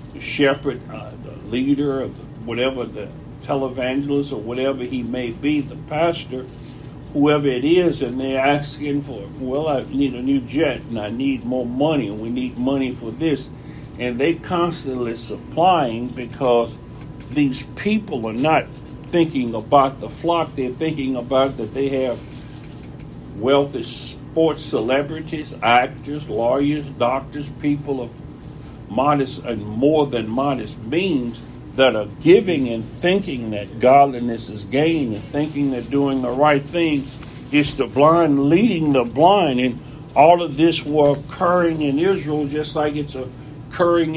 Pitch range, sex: 125-150 Hz, male